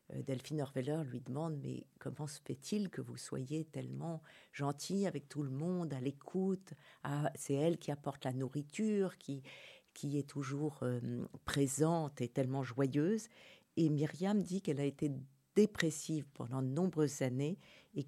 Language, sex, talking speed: French, female, 155 wpm